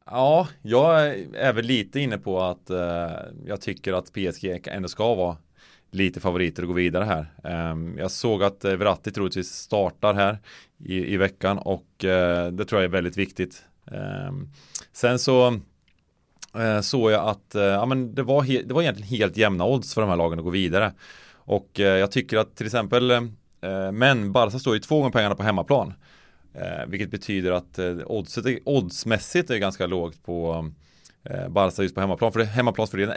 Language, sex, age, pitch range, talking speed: Swedish, male, 30-49, 90-120 Hz, 190 wpm